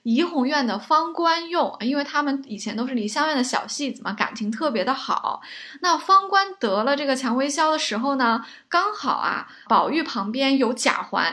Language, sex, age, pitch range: Chinese, female, 20-39, 235-315 Hz